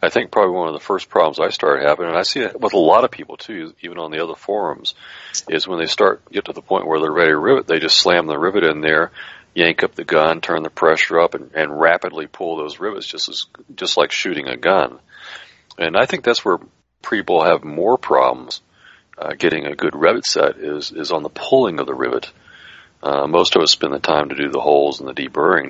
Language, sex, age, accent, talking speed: English, male, 40-59, American, 245 wpm